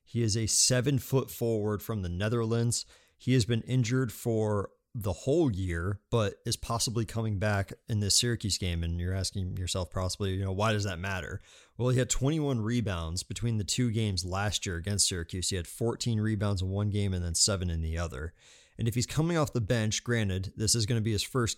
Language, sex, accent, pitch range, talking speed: English, male, American, 95-120 Hz, 215 wpm